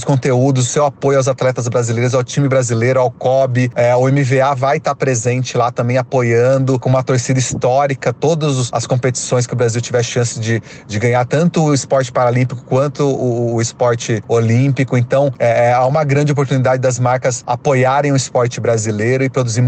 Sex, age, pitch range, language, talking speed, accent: male, 30-49, 115-130 Hz, Portuguese, 175 wpm, Brazilian